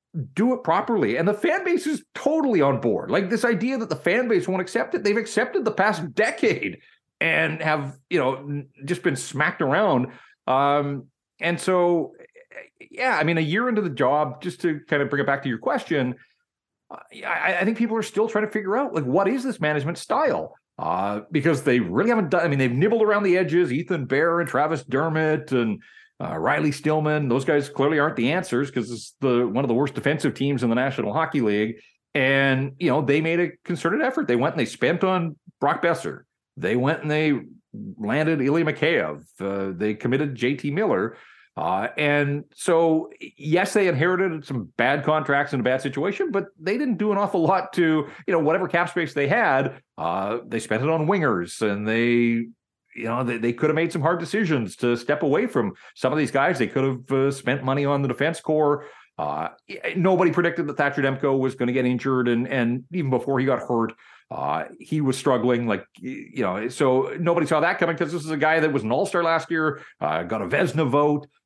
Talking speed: 210 wpm